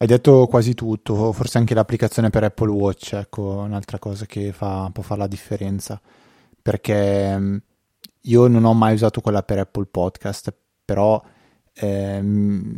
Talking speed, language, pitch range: 145 wpm, Italian, 100-115 Hz